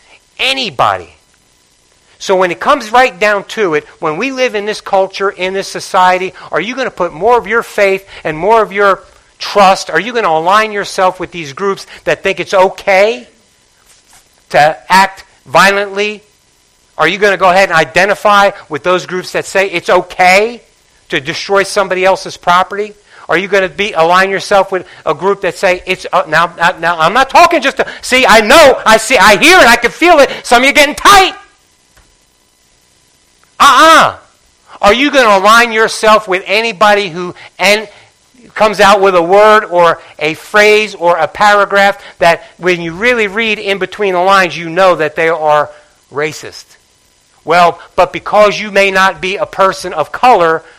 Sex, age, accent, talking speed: male, 50-69, American, 185 wpm